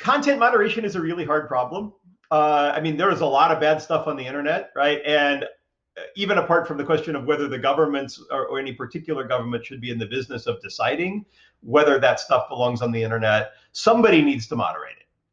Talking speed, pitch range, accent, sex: 215 wpm, 130-170 Hz, American, male